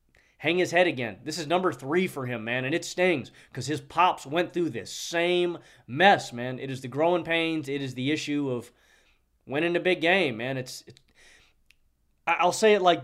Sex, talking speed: male, 205 wpm